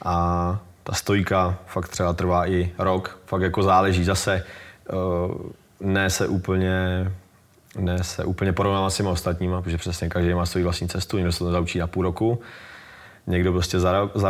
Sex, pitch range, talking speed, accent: male, 90-100 Hz, 170 wpm, native